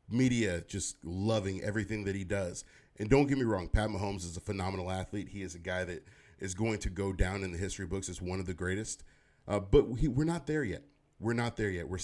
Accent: American